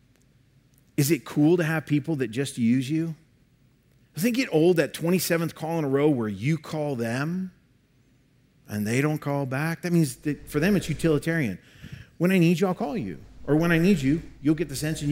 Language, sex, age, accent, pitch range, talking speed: English, male, 40-59, American, 120-160 Hz, 210 wpm